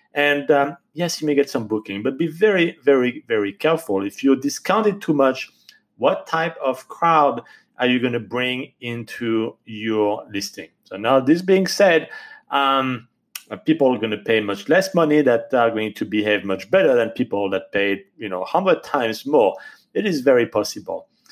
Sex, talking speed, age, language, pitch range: male, 190 wpm, 40-59, English, 110-155 Hz